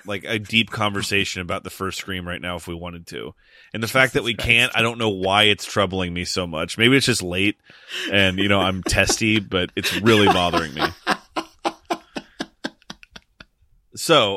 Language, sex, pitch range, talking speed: English, male, 95-115 Hz, 185 wpm